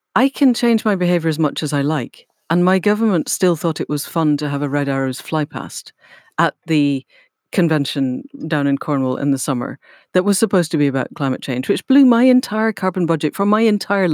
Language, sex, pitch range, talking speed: English, female, 150-220 Hz, 215 wpm